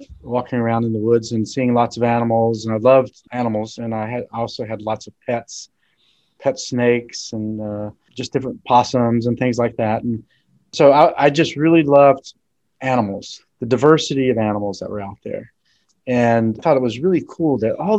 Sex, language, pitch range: male, English, 115-145 Hz